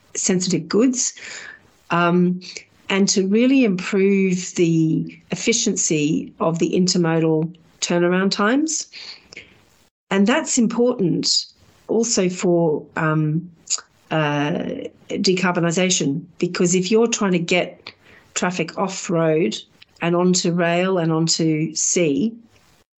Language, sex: German, female